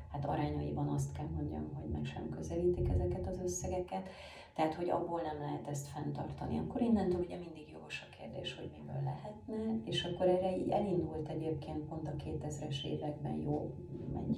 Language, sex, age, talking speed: Hungarian, female, 30-49, 165 wpm